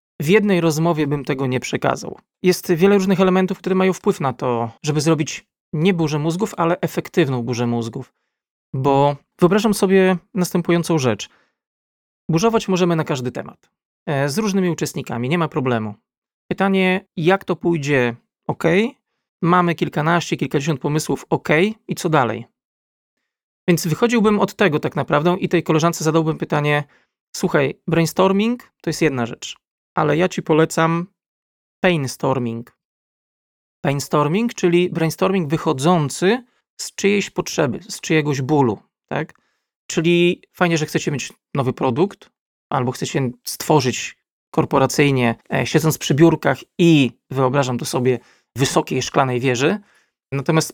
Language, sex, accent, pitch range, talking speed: Polish, male, native, 140-180 Hz, 130 wpm